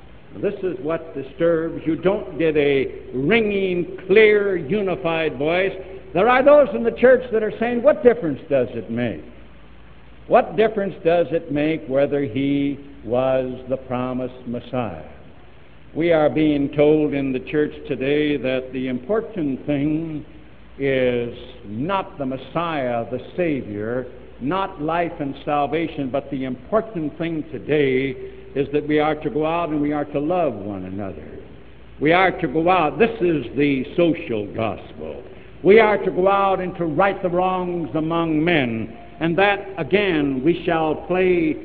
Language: English